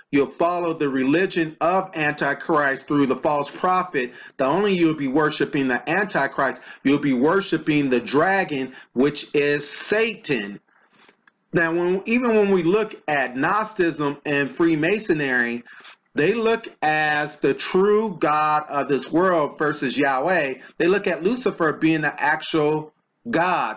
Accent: American